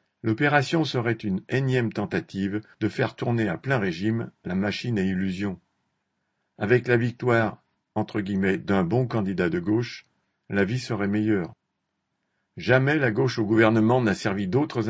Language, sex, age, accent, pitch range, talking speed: French, male, 50-69, French, 105-130 Hz, 150 wpm